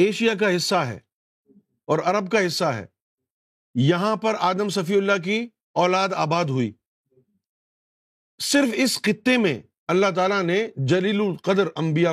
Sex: male